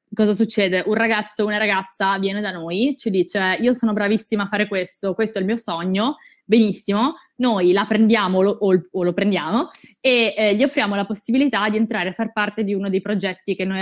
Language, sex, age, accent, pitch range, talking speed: Italian, female, 20-39, native, 190-230 Hz, 210 wpm